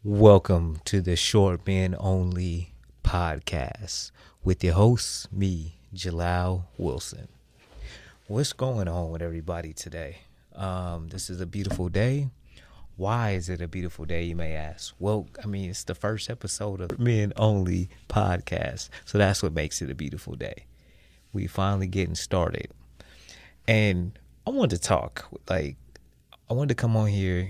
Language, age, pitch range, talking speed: English, 30-49, 85-105 Hz, 150 wpm